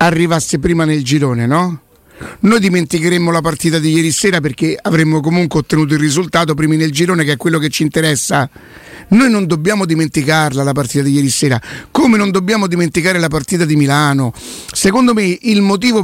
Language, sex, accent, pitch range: Italian, male, native, 155-190 Hz